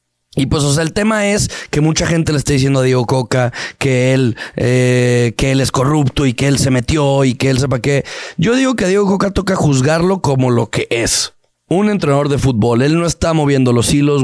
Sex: male